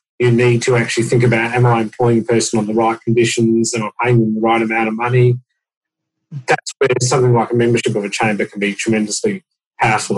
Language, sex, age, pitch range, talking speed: English, male, 40-59, 115-130 Hz, 220 wpm